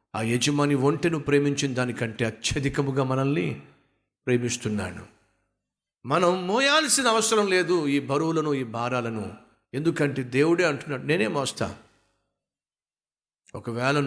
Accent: native